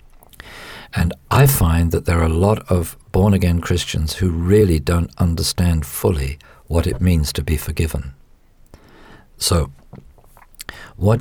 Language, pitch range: English, 80-100 Hz